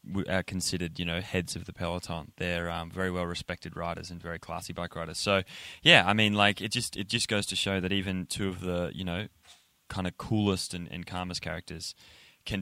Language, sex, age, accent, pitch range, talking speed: English, male, 20-39, Australian, 85-105 Hz, 220 wpm